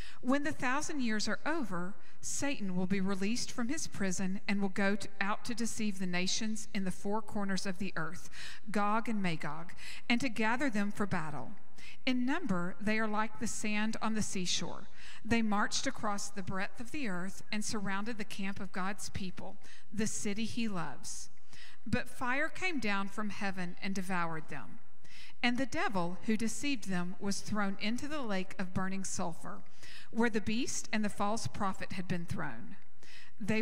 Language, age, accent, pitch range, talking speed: English, 50-69, American, 190-235 Hz, 180 wpm